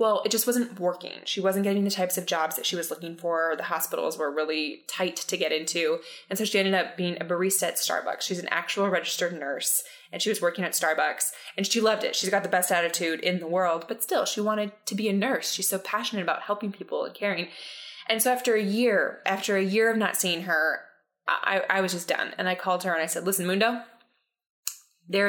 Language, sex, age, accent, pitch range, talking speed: English, female, 20-39, American, 180-225 Hz, 240 wpm